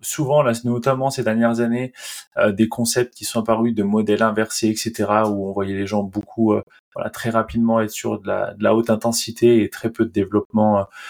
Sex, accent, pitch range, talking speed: male, French, 105-125 Hz, 195 wpm